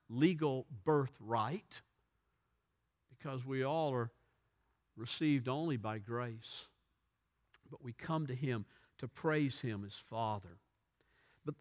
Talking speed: 110 wpm